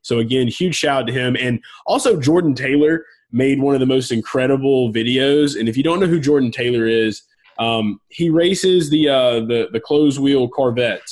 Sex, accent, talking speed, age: male, American, 200 wpm, 20-39